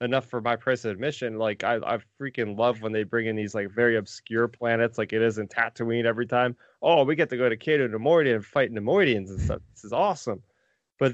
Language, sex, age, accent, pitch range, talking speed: English, male, 20-39, American, 115-135 Hz, 230 wpm